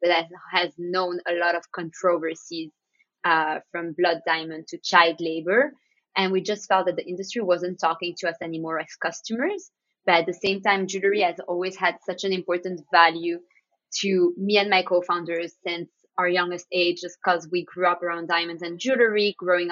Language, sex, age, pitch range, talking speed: English, female, 20-39, 170-190 Hz, 185 wpm